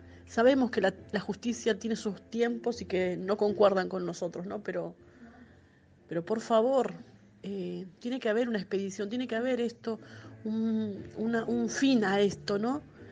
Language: Spanish